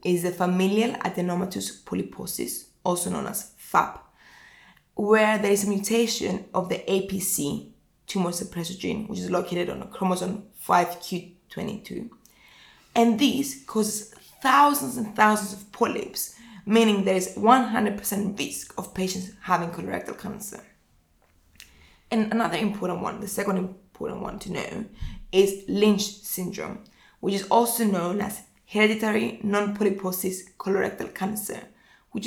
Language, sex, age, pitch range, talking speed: English, female, 20-39, 185-220 Hz, 125 wpm